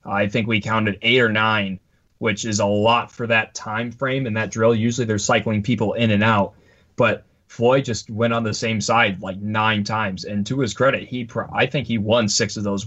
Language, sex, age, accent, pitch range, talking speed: English, male, 20-39, American, 105-120 Hz, 225 wpm